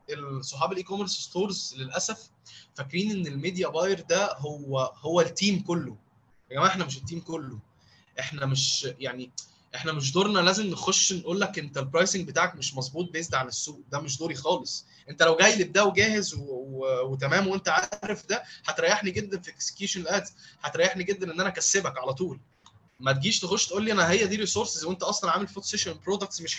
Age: 20-39